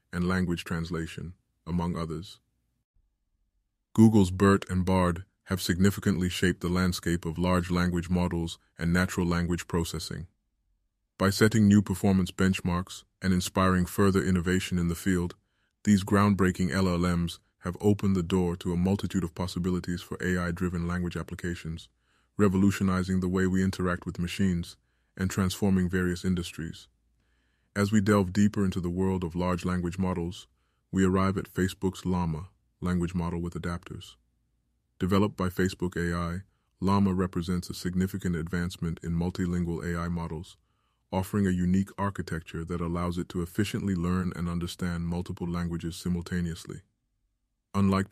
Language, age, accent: English, 20-39, American